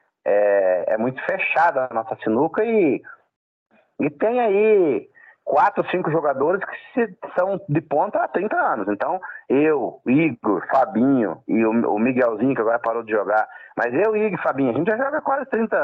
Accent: Brazilian